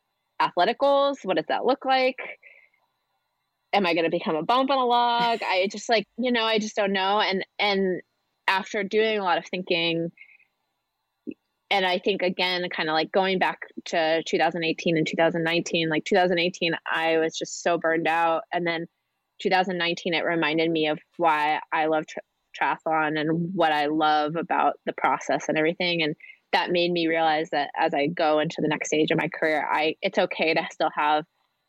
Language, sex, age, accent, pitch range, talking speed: English, female, 20-39, American, 155-190 Hz, 185 wpm